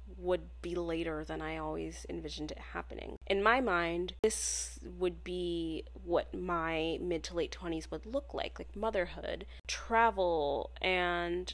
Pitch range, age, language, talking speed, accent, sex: 170-210 Hz, 20-39, English, 145 wpm, American, female